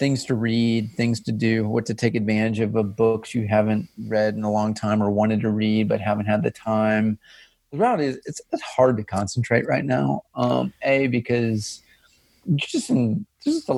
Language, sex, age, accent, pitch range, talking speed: English, male, 40-59, American, 110-130 Hz, 205 wpm